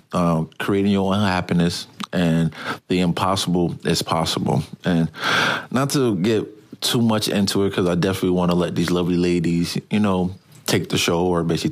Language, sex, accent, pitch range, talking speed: English, male, American, 85-100 Hz, 175 wpm